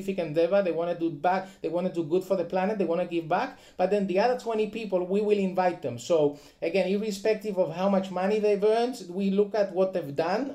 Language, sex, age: English, male, 30-49